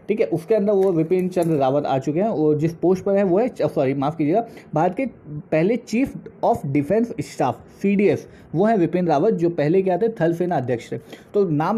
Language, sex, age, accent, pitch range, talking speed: Hindi, male, 20-39, native, 150-205 Hz, 220 wpm